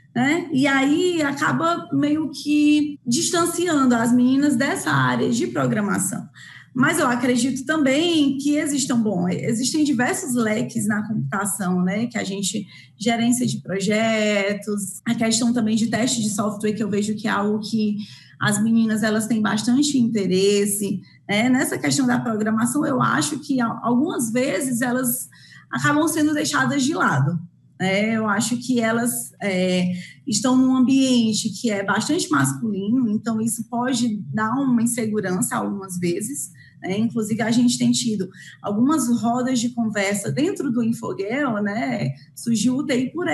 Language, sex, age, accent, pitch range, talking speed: Portuguese, female, 20-39, Brazilian, 210-280 Hz, 145 wpm